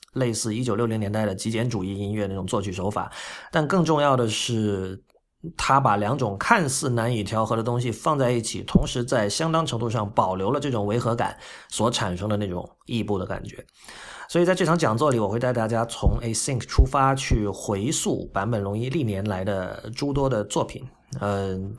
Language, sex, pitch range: Chinese, male, 105-135 Hz